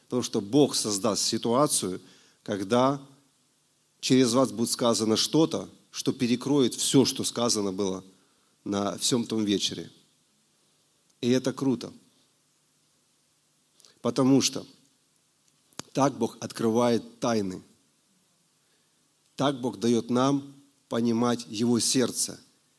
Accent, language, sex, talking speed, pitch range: native, Russian, male, 95 wpm, 115-140 Hz